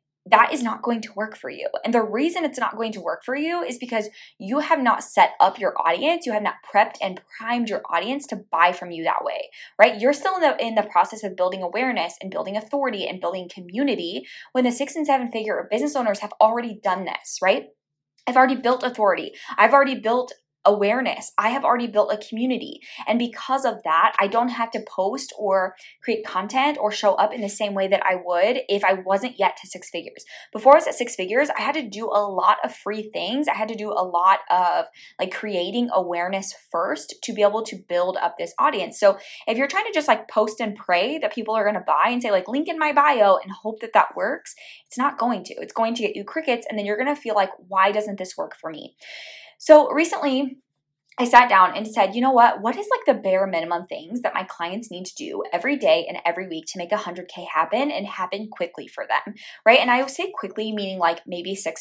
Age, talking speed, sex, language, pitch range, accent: 20-39, 240 wpm, female, English, 195-265 Hz, American